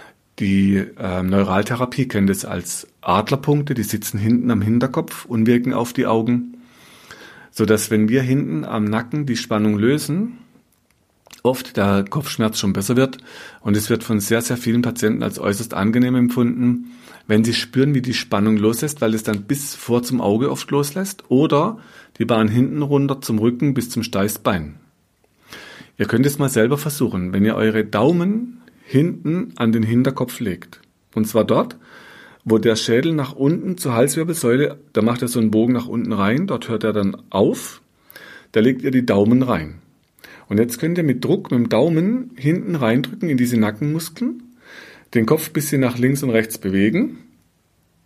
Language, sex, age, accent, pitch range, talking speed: German, male, 40-59, German, 110-140 Hz, 170 wpm